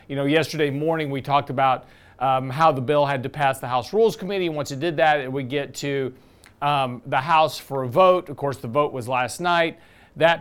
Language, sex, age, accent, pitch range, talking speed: English, male, 40-59, American, 130-165 Hz, 230 wpm